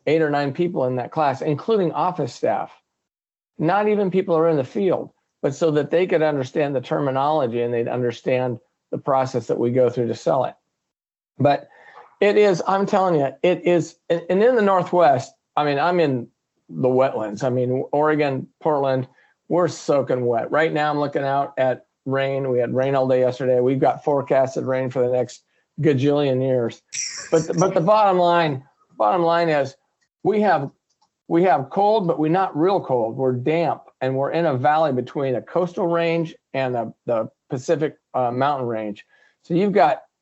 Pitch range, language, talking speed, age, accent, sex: 130-170 Hz, English, 185 wpm, 50-69, American, male